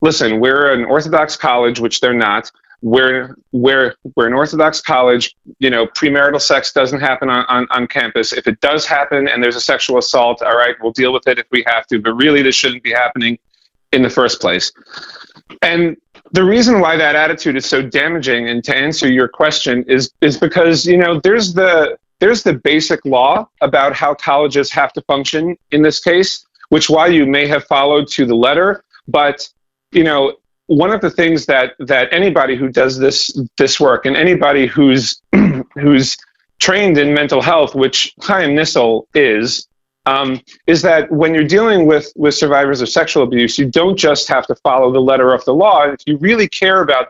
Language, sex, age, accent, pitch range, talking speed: English, male, 40-59, American, 130-155 Hz, 190 wpm